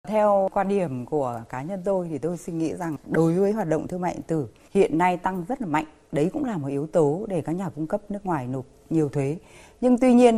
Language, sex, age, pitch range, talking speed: Vietnamese, female, 20-39, 145-200 Hz, 260 wpm